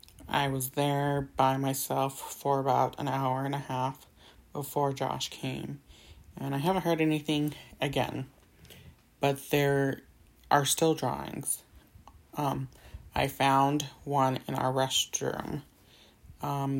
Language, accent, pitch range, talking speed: English, American, 130-145 Hz, 120 wpm